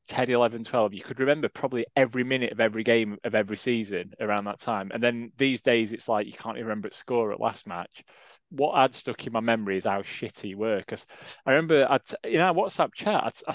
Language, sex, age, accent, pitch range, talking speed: English, male, 20-39, British, 115-150 Hz, 240 wpm